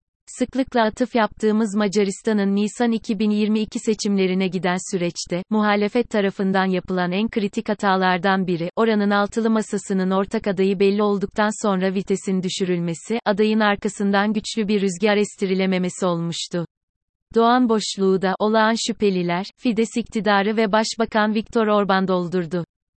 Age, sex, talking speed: 30-49, female, 120 wpm